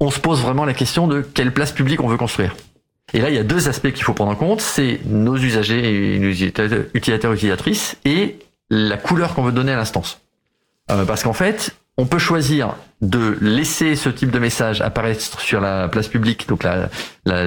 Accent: French